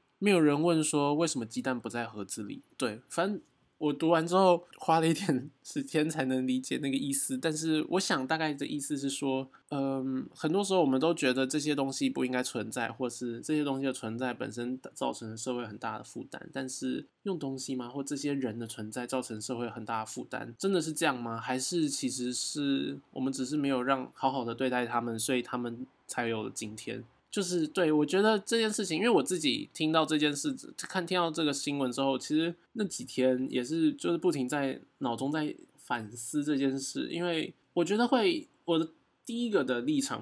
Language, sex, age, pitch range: Chinese, male, 20-39, 125-160 Hz